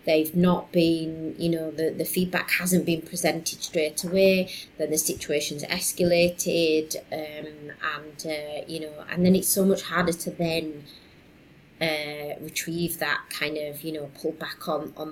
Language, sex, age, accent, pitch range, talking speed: English, female, 30-49, British, 155-180 Hz, 165 wpm